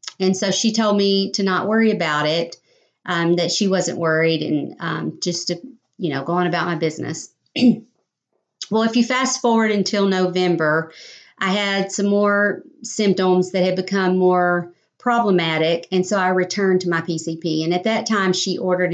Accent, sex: American, female